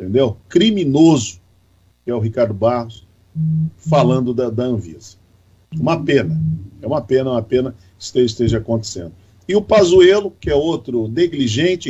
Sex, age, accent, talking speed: male, 50-69, Brazilian, 145 wpm